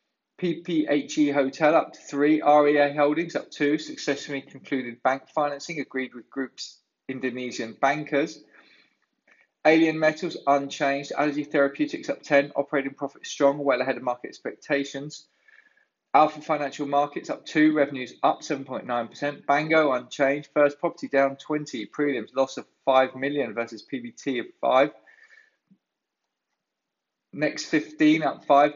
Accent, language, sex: British, English, male